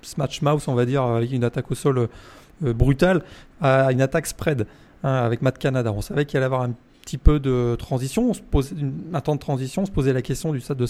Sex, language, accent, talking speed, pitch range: male, French, French, 250 wpm, 125-150 Hz